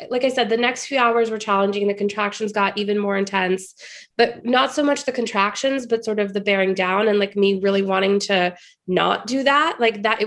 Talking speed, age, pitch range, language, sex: 220 wpm, 20-39, 195-235 Hz, English, female